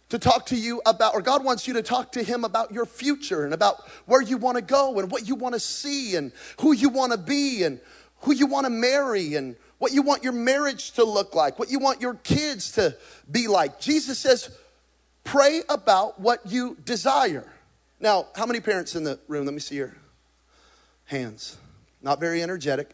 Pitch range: 150-240 Hz